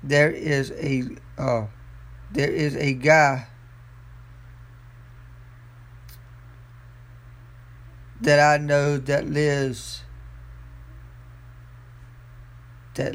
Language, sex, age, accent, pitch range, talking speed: English, male, 50-69, American, 120-125 Hz, 65 wpm